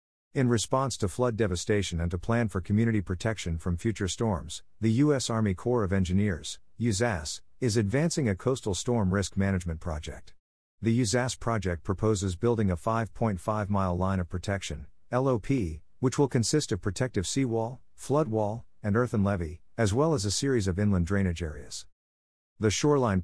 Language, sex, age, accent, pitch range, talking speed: English, male, 50-69, American, 90-115 Hz, 160 wpm